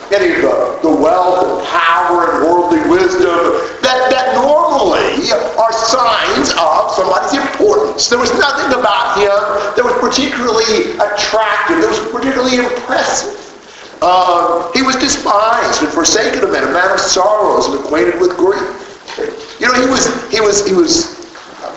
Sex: male